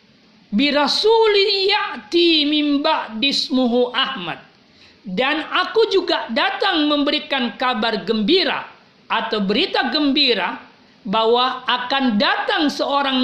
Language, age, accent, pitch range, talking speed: Indonesian, 40-59, native, 225-315 Hz, 80 wpm